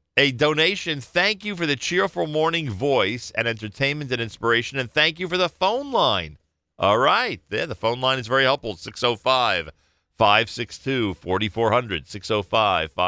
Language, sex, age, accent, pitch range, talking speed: English, male, 40-59, American, 85-115 Hz, 140 wpm